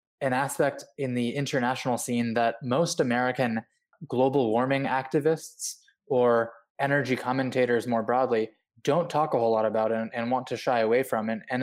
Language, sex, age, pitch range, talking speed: English, male, 20-39, 115-130 Hz, 165 wpm